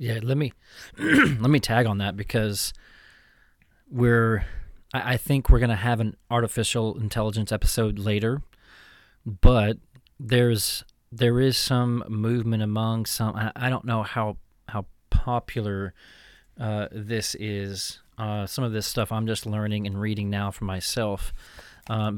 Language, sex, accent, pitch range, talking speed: English, male, American, 105-120 Hz, 145 wpm